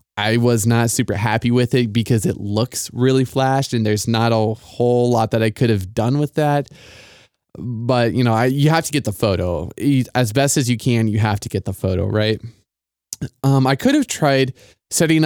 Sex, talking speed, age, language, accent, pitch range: male, 210 wpm, 20-39, English, American, 110-140 Hz